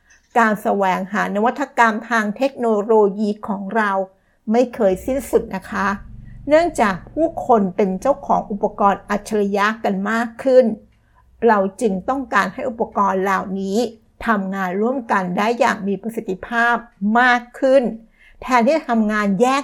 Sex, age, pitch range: female, 60-79, 200-240 Hz